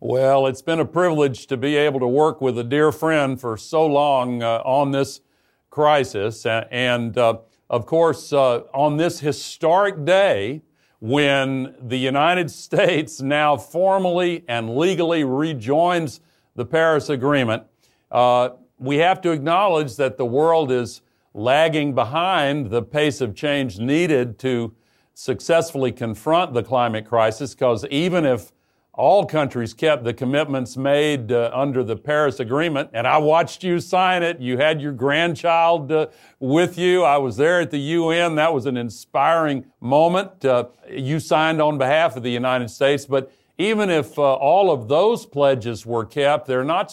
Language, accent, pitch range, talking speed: English, American, 125-155 Hz, 155 wpm